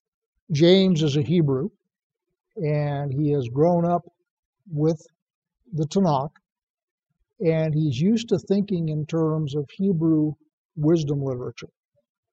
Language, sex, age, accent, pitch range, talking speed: English, male, 60-79, American, 150-185 Hz, 110 wpm